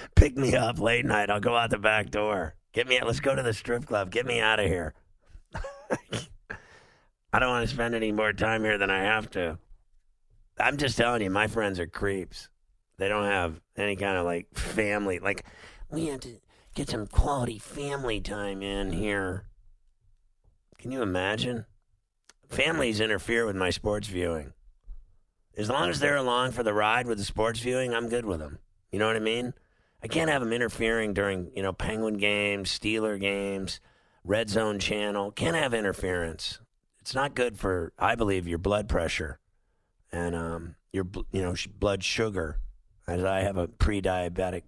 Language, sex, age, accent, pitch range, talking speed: English, male, 50-69, American, 95-115 Hz, 180 wpm